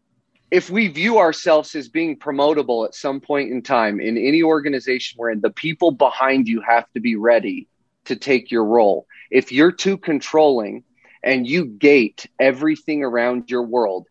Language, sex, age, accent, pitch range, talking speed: English, male, 30-49, American, 120-155 Hz, 165 wpm